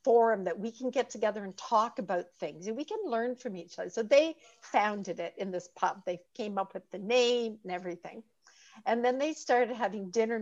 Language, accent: English, American